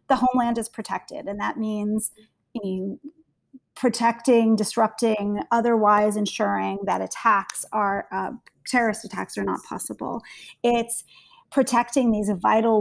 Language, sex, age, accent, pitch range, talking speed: English, female, 30-49, American, 200-235 Hz, 120 wpm